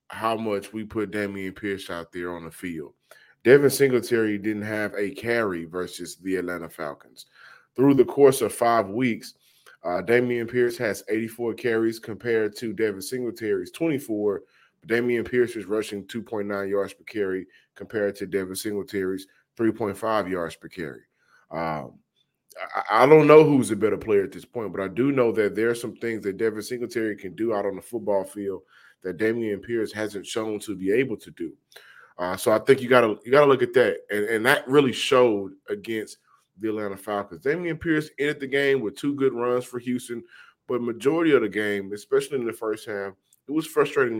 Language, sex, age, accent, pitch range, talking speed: English, male, 20-39, American, 100-140 Hz, 190 wpm